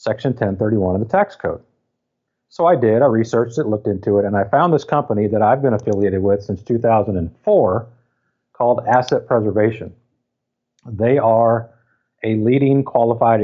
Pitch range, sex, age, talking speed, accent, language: 105-120 Hz, male, 50-69, 155 wpm, American, English